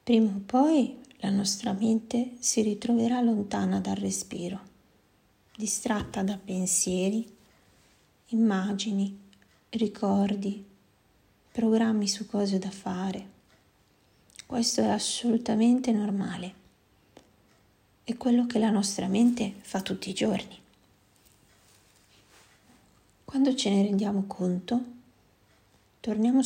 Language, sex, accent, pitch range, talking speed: Italian, female, native, 170-225 Hz, 95 wpm